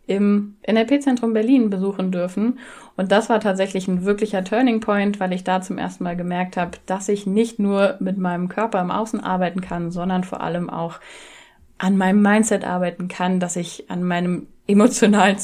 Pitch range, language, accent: 185-215 Hz, German, German